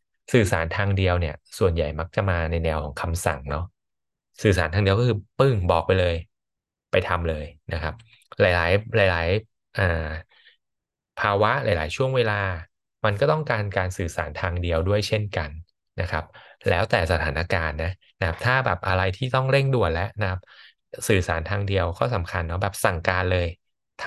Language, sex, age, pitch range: Thai, male, 20-39, 85-110 Hz